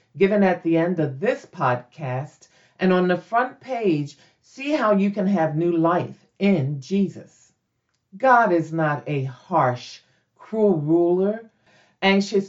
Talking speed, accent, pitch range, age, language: 140 wpm, American, 160-225 Hz, 50-69, English